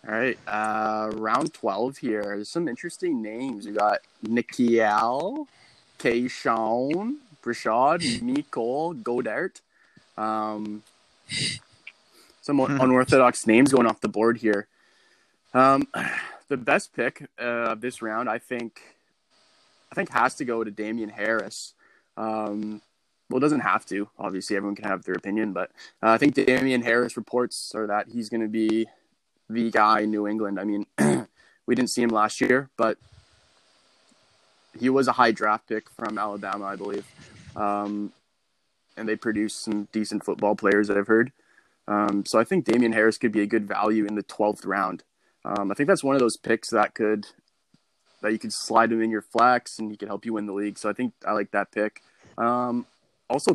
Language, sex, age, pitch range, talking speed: English, male, 20-39, 105-120 Hz, 170 wpm